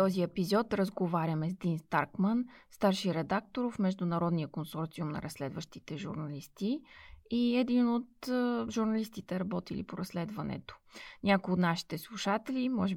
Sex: female